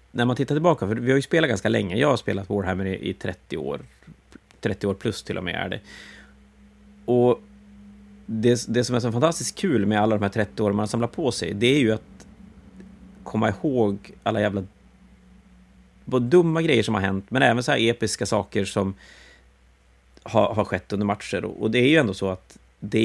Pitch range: 95-125 Hz